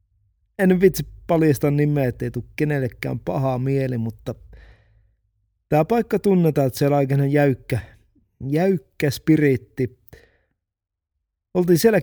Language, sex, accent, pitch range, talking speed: Finnish, male, native, 105-150 Hz, 115 wpm